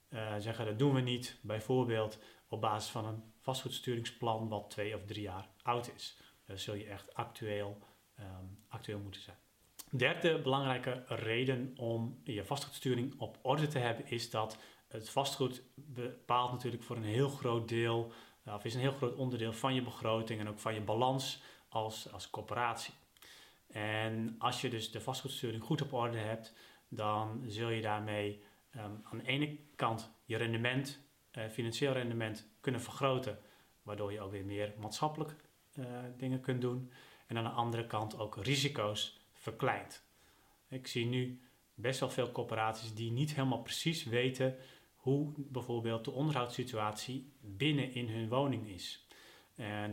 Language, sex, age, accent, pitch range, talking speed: Dutch, male, 30-49, Dutch, 110-130 Hz, 155 wpm